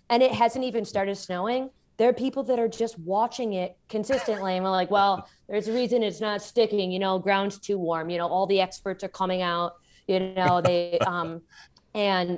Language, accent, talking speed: English, American, 210 wpm